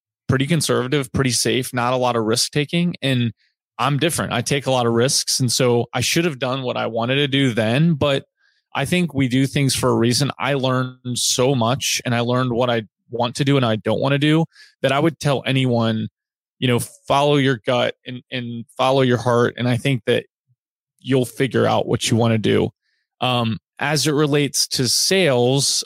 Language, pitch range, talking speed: English, 120-145 Hz, 210 wpm